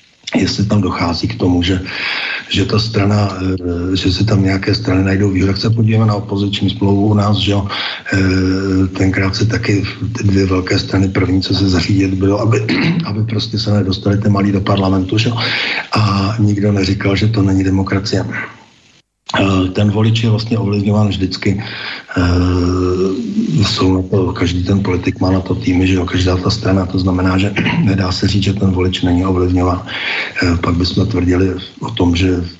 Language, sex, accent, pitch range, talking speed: Czech, male, native, 95-115 Hz, 170 wpm